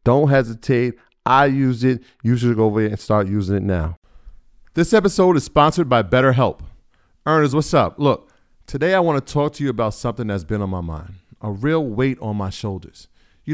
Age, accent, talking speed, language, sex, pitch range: 40-59, American, 205 wpm, English, male, 100-135 Hz